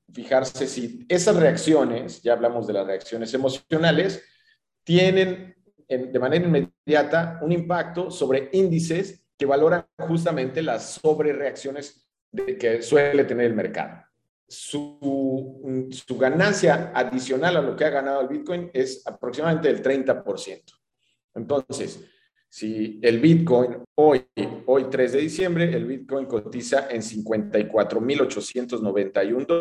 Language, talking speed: English, 125 wpm